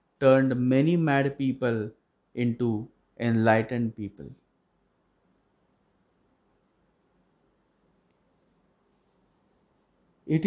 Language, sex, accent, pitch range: English, male, Indian, 115-145 Hz